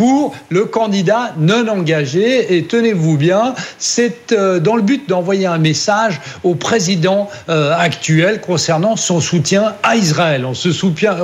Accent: French